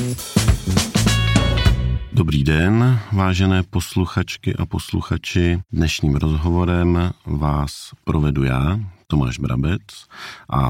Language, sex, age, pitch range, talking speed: Czech, male, 50-69, 75-100 Hz, 80 wpm